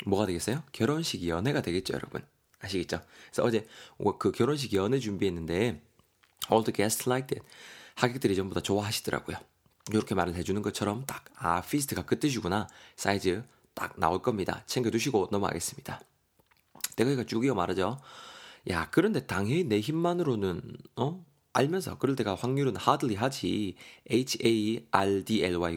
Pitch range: 95-130 Hz